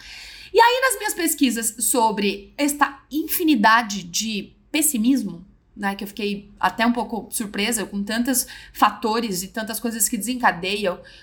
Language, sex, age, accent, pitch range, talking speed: Portuguese, female, 30-49, Brazilian, 235-315 Hz, 140 wpm